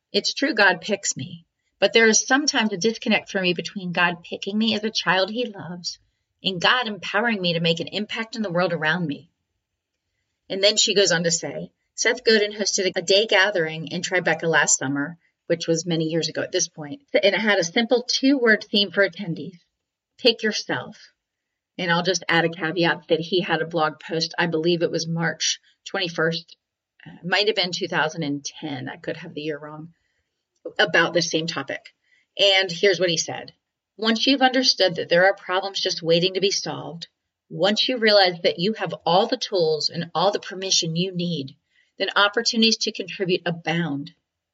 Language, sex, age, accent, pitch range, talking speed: English, female, 30-49, American, 165-205 Hz, 190 wpm